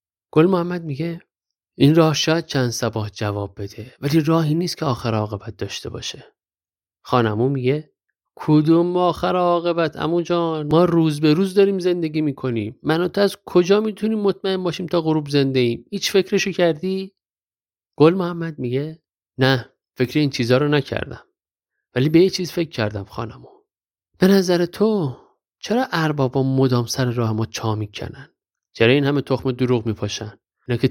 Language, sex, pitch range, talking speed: Persian, male, 115-165 Hz, 155 wpm